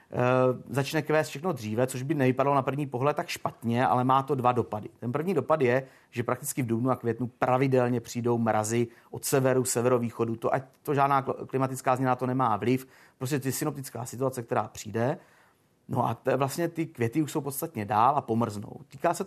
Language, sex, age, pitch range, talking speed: Czech, male, 30-49, 120-150 Hz, 195 wpm